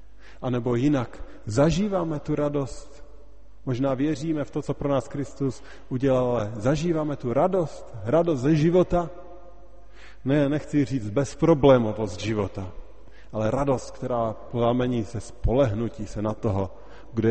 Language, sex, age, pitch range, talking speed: Slovak, male, 30-49, 105-140 Hz, 130 wpm